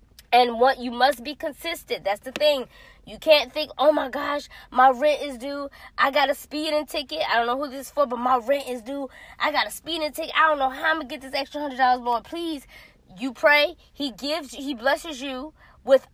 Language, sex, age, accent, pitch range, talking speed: English, female, 20-39, American, 245-295 Hz, 235 wpm